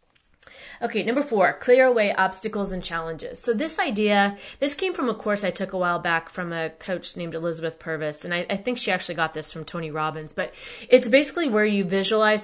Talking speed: 210 wpm